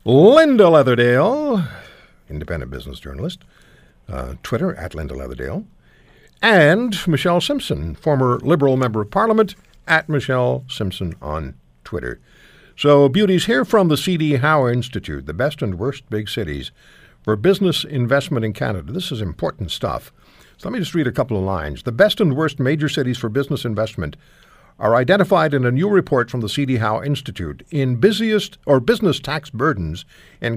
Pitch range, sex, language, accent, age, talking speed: 105-160 Hz, male, English, American, 60-79, 155 wpm